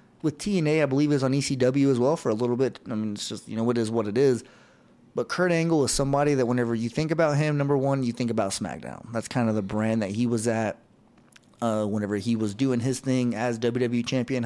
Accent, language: American, English